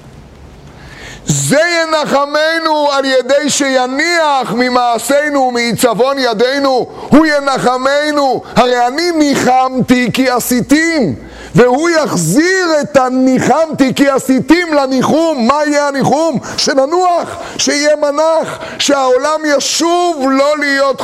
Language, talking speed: Hebrew, 90 wpm